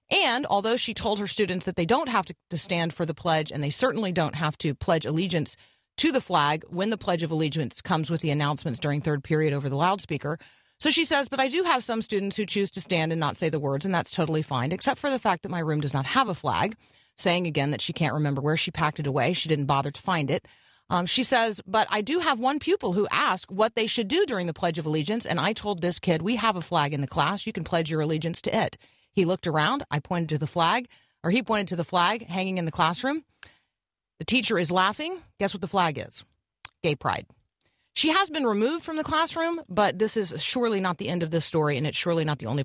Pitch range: 150-205 Hz